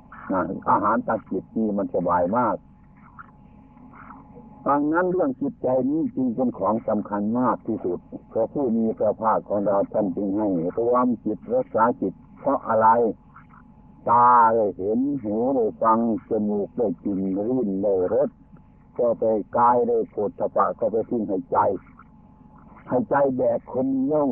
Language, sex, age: Thai, male, 60-79